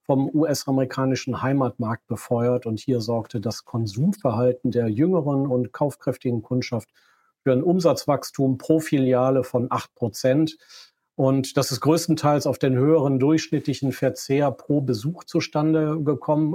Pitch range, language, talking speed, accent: 125-150 Hz, German, 125 wpm, German